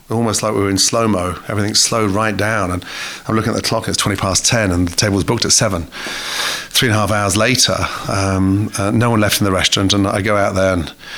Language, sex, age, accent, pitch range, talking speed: English, male, 40-59, British, 95-115 Hz, 245 wpm